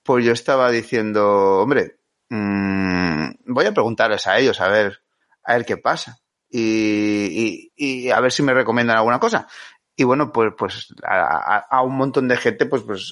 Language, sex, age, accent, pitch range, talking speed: Spanish, male, 30-49, Spanish, 110-135 Hz, 185 wpm